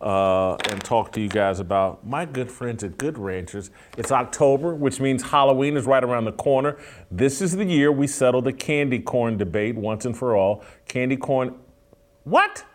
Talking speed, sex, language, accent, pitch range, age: 190 wpm, male, English, American, 115-155 Hz, 40-59